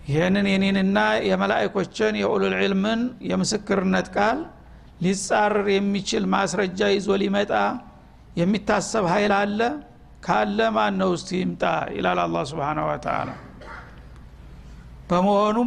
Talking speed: 85 wpm